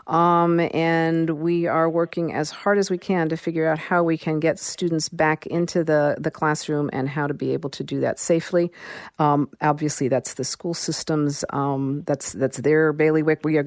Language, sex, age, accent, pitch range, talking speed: English, female, 50-69, American, 145-170 Hz, 200 wpm